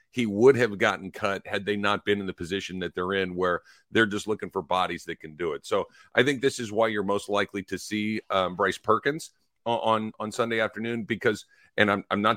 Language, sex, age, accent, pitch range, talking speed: English, male, 50-69, American, 95-115 Hz, 235 wpm